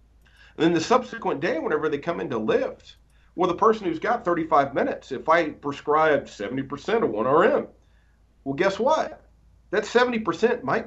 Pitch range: 125-185 Hz